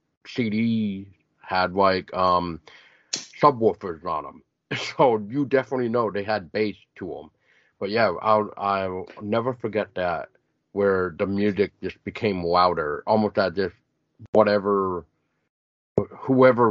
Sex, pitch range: male, 90-120 Hz